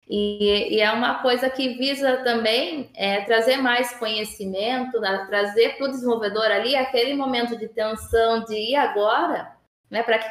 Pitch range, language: 205-260 Hz, Portuguese